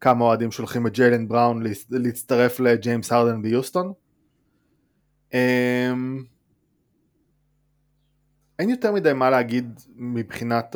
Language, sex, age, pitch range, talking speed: Hebrew, male, 20-39, 120-145 Hz, 90 wpm